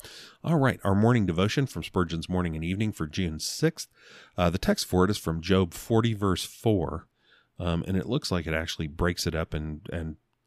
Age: 40-59